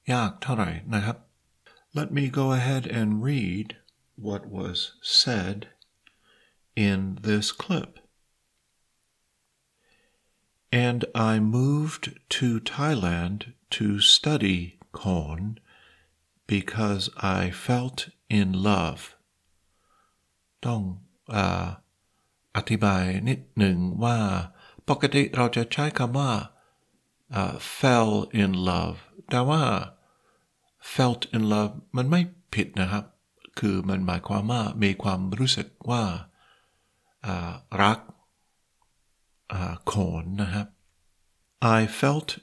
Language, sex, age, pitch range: Thai, male, 50-69, 95-125 Hz